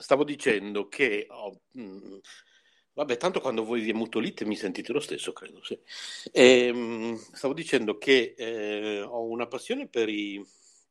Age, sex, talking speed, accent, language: 50-69, male, 150 wpm, native, Italian